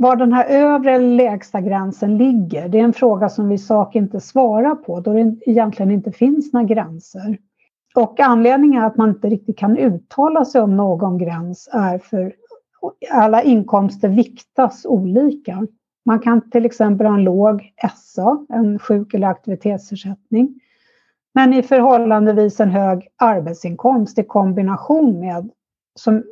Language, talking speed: Swedish, 155 wpm